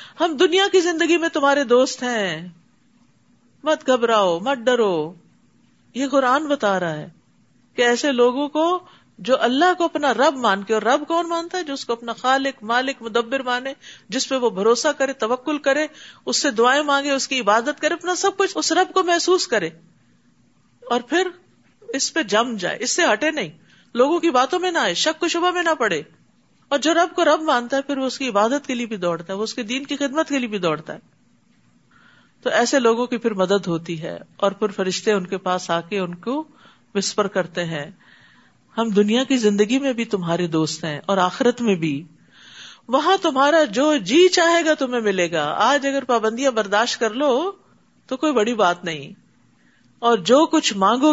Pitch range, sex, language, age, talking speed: 205-300 Hz, female, Urdu, 50-69, 200 wpm